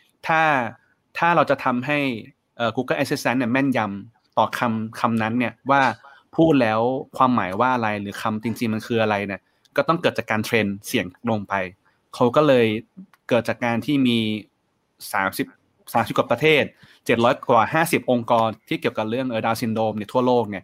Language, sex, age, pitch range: Thai, male, 20-39, 110-130 Hz